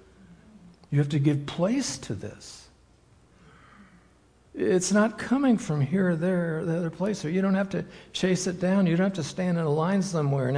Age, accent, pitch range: 60-79, American, 105-150 Hz